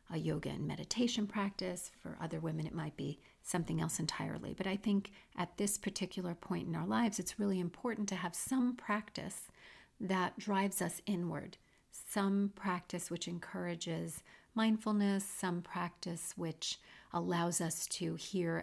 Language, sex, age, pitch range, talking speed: English, female, 40-59, 165-195 Hz, 150 wpm